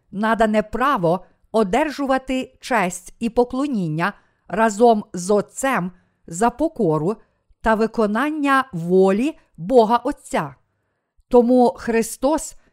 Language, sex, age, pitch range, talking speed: Ukrainian, female, 50-69, 195-260 Hz, 85 wpm